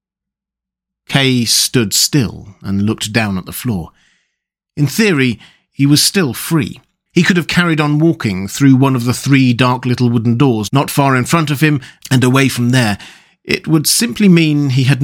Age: 40-59